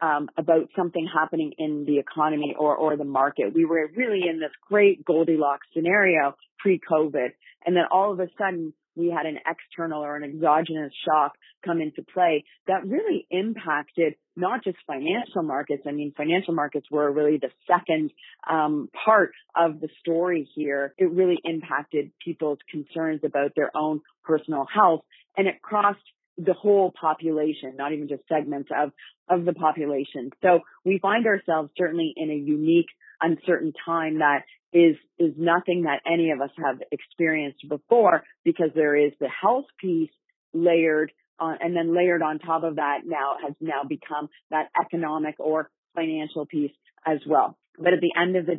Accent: American